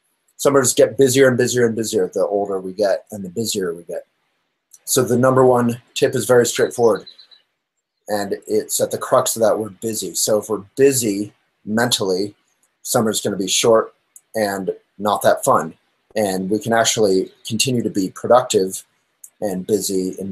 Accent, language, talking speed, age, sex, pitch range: American, English, 170 wpm, 30-49, male, 100-125 Hz